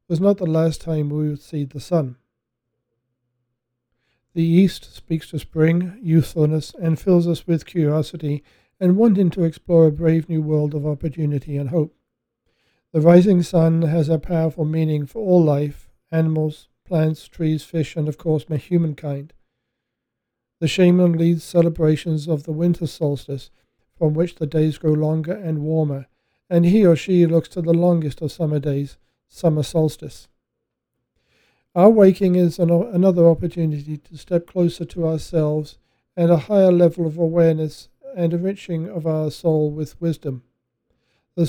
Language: English